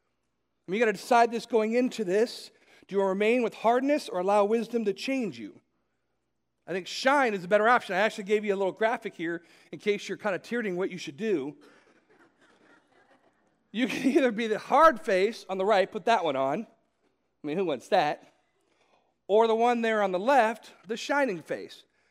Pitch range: 175-230 Hz